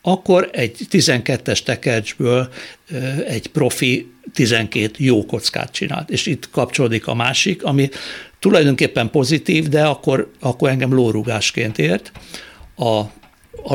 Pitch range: 115-160 Hz